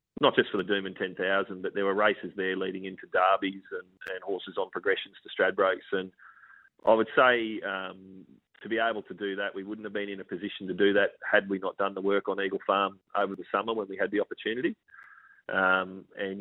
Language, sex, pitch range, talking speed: English, male, 95-105 Hz, 225 wpm